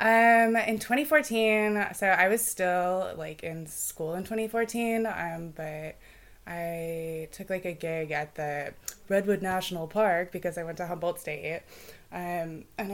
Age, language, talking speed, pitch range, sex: 20-39, English, 150 wpm, 165-220 Hz, female